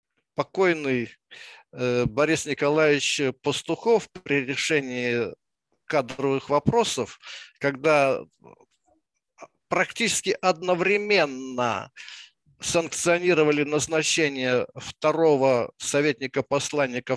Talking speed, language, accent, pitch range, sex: 50 wpm, Russian, native, 140-200 Hz, male